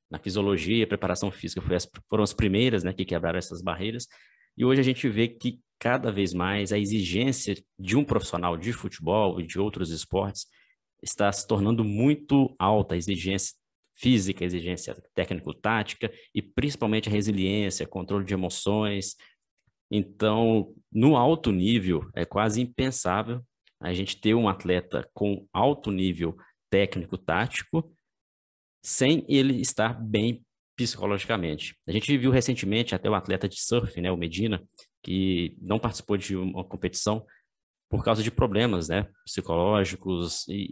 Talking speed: 145 wpm